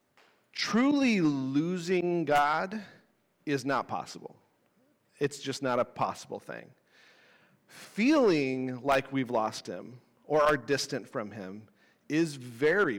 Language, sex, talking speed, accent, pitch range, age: English, male, 110 wpm, American, 140-185 Hz, 40-59